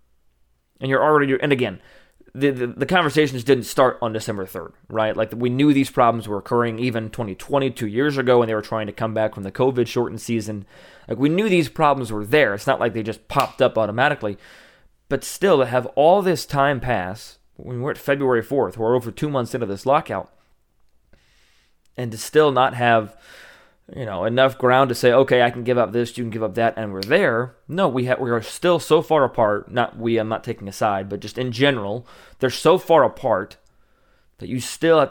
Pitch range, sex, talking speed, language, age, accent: 110-135 Hz, male, 215 wpm, English, 20-39, American